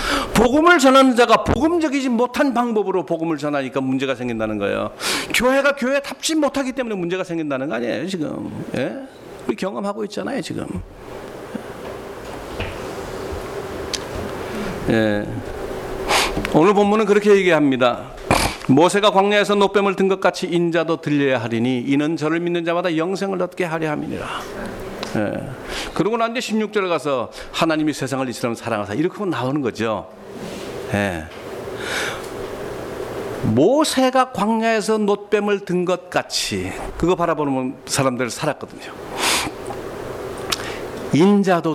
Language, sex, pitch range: Korean, male, 135-215 Hz